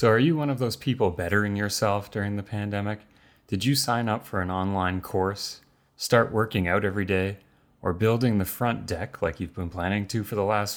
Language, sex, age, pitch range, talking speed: English, male, 30-49, 90-115 Hz, 210 wpm